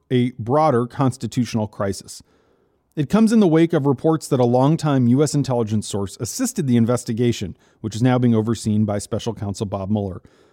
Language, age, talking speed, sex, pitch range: English, 40-59, 170 wpm, male, 115-145 Hz